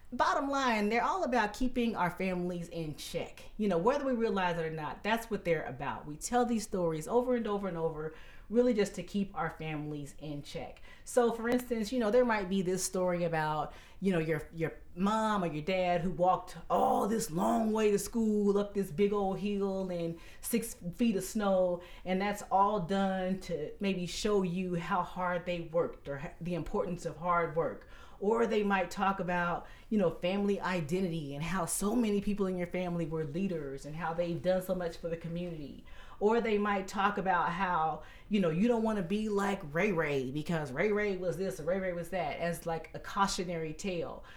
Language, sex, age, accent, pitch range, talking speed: English, female, 30-49, American, 170-210 Hz, 205 wpm